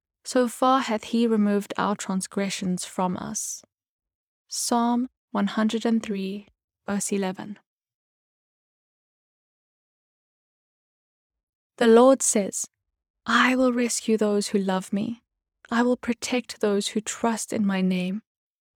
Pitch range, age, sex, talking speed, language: 200-235 Hz, 10-29, female, 100 wpm, English